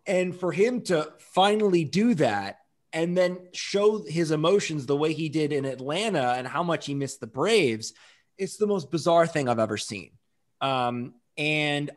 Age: 30-49